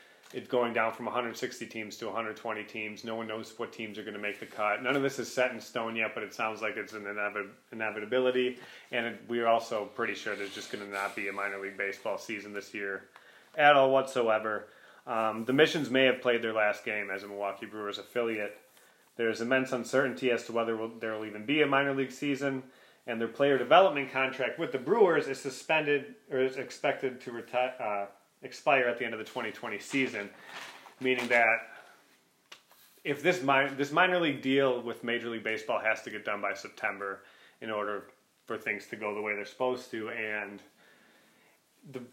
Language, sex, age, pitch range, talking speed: English, male, 30-49, 105-130 Hz, 200 wpm